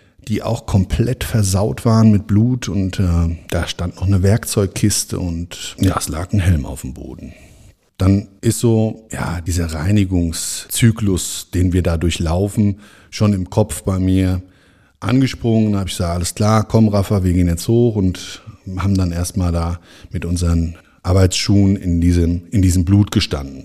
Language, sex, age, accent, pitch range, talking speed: German, male, 50-69, German, 90-125 Hz, 165 wpm